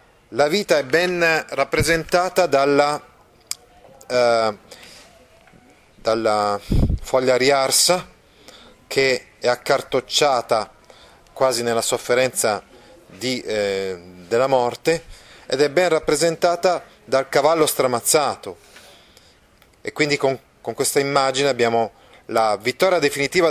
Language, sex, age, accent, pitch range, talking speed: Italian, male, 30-49, native, 110-150 Hz, 90 wpm